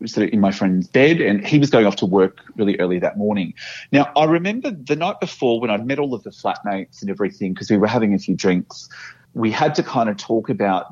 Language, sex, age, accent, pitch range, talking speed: English, male, 30-49, Australian, 95-140 Hz, 255 wpm